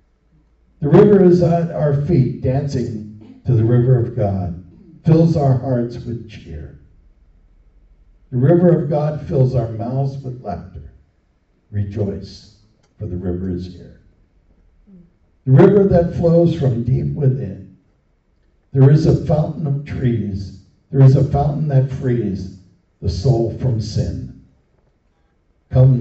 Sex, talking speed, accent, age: male, 130 wpm, American, 60-79